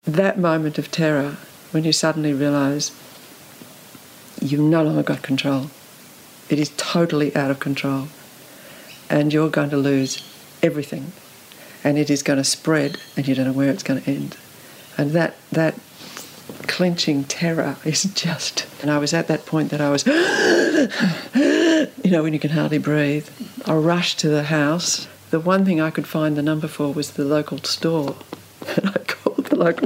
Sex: female